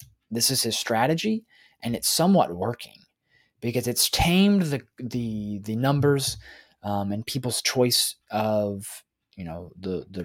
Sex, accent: male, American